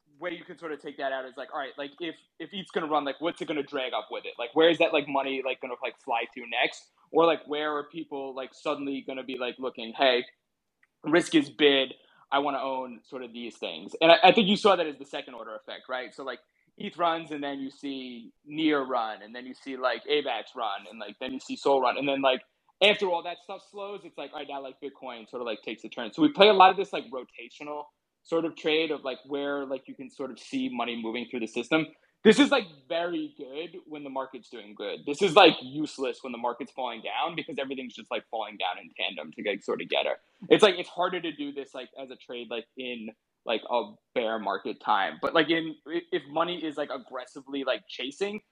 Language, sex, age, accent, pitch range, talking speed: English, male, 20-39, American, 130-170 Hz, 260 wpm